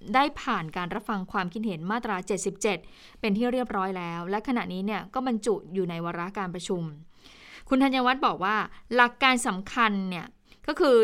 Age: 20-39